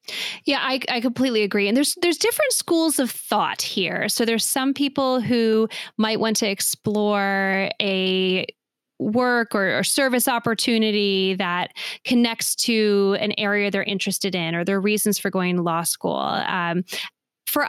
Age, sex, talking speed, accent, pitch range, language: 20-39, female, 155 wpm, American, 195-245 Hz, English